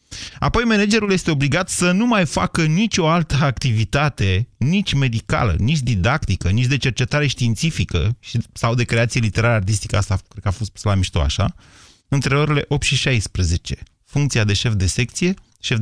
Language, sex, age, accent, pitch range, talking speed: Romanian, male, 30-49, native, 110-150 Hz, 160 wpm